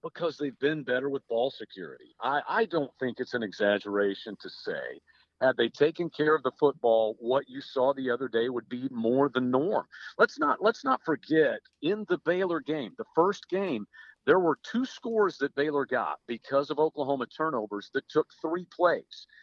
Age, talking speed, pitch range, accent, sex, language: 50-69, 190 wpm, 120-165 Hz, American, male, English